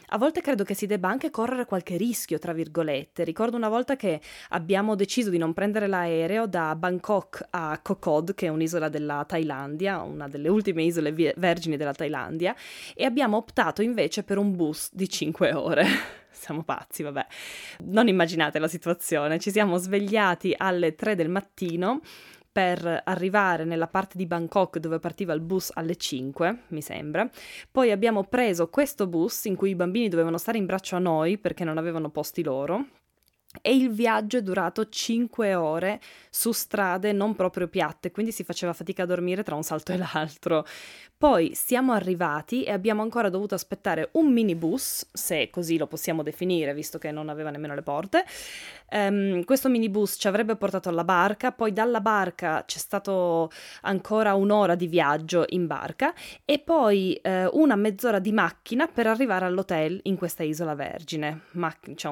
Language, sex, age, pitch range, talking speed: Italian, female, 20-39, 165-210 Hz, 170 wpm